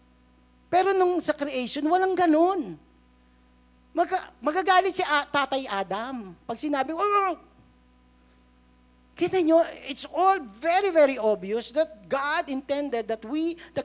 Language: Filipino